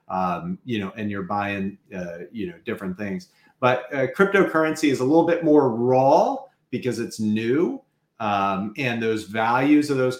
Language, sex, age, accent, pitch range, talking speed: English, male, 40-59, American, 110-145 Hz, 170 wpm